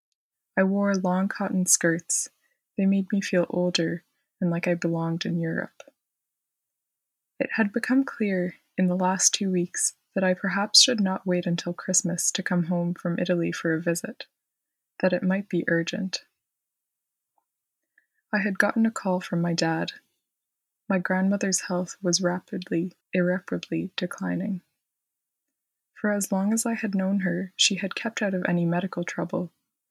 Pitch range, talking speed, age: 175-200 Hz, 155 wpm, 20-39